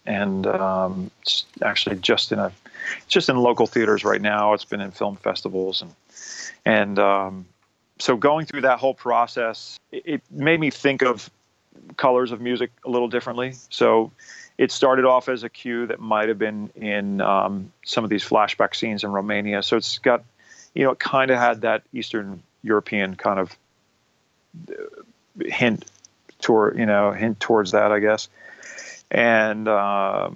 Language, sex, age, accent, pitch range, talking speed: English, male, 40-59, American, 105-125 Hz, 165 wpm